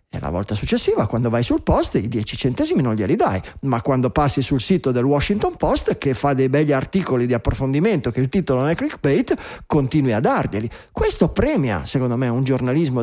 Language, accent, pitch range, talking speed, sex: Italian, native, 120-145 Hz, 205 wpm, male